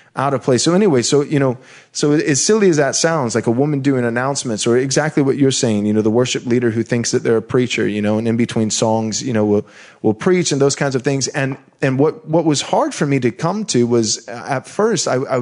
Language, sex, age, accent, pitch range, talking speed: English, male, 30-49, American, 120-155 Hz, 260 wpm